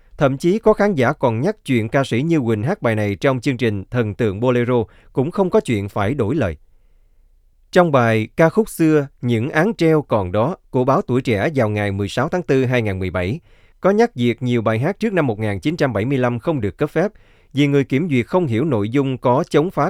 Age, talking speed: 20-39, 215 wpm